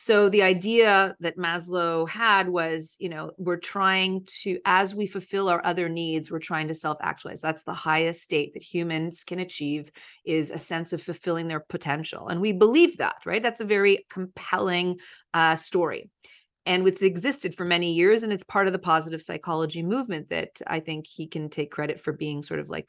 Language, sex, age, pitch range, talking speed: English, female, 30-49, 165-205 Hz, 195 wpm